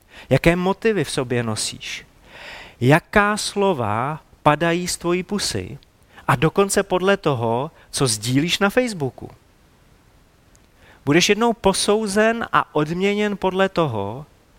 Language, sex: Czech, male